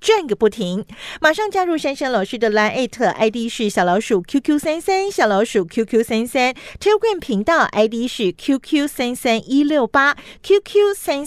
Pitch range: 195-295 Hz